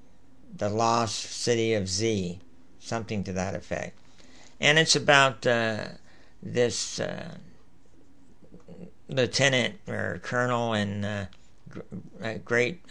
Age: 60-79